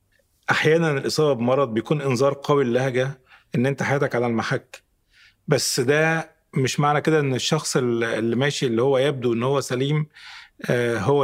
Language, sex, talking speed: Arabic, male, 150 wpm